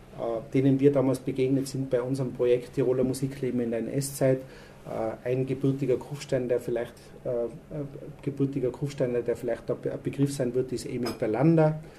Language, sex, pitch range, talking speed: German, male, 120-140 Hz, 175 wpm